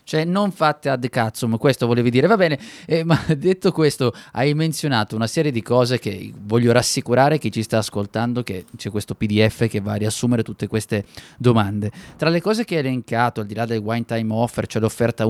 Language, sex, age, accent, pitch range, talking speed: Italian, male, 20-39, native, 110-140 Hz, 210 wpm